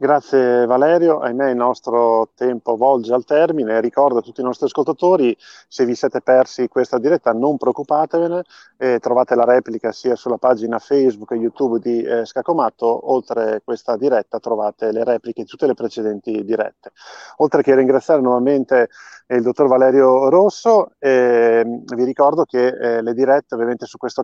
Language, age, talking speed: Italian, 30-49, 165 wpm